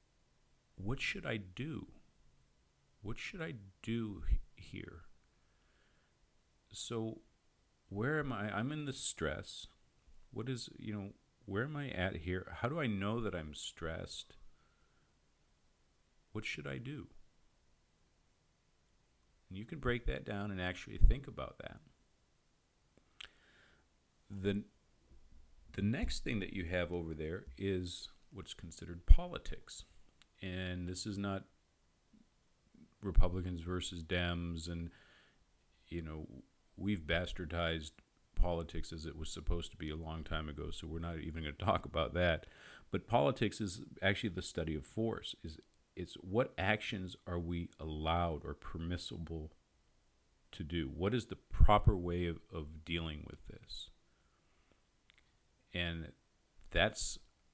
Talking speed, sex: 130 wpm, male